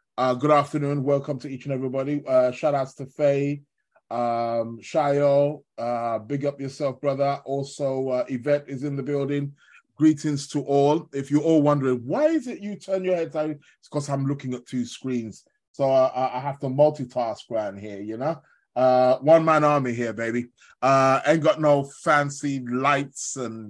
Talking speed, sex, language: 180 wpm, male, English